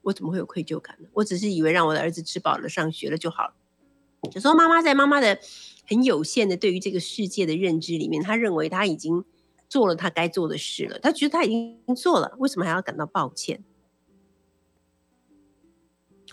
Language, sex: Chinese, female